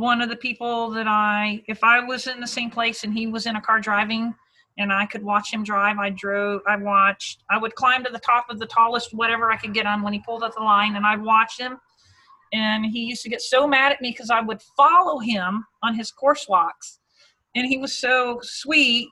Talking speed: 240 wpm